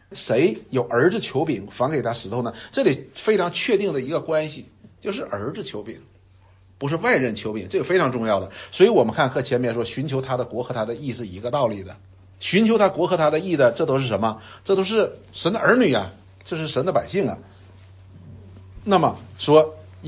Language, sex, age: Chinese, male, 60-79